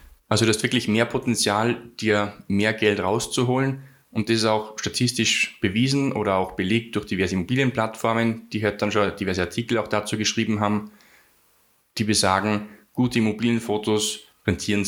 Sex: male